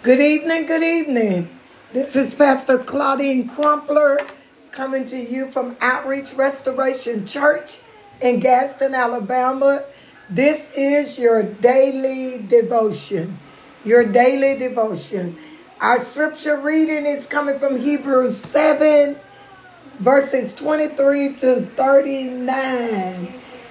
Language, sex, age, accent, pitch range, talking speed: English, female, 60-79, American, 245-305 Hz, 95 wpm